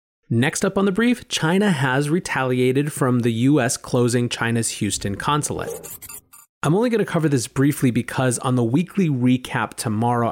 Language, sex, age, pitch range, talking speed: English, male, 30-49, 115-150 Hz, 165 wpm